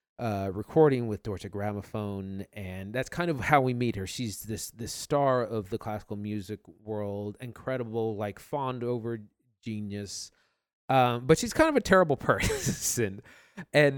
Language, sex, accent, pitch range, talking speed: English, male, American, 100-130 Hz, 155 wpm